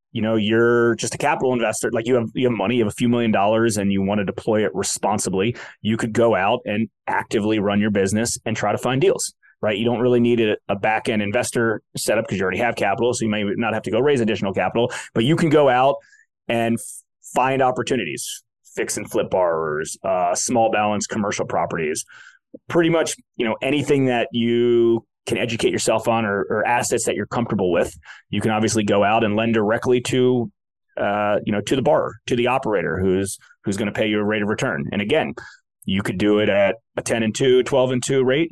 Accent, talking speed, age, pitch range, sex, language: American, 220 wpm, 30-49, 110-130 Hz, male, English